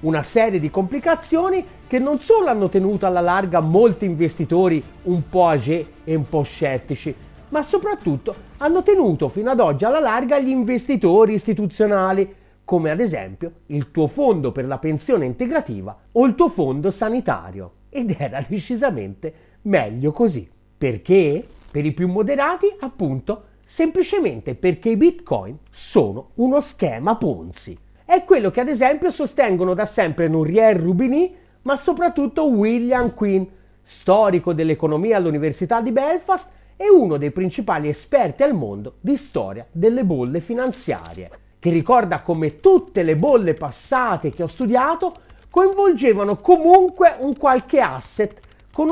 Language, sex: Italian, male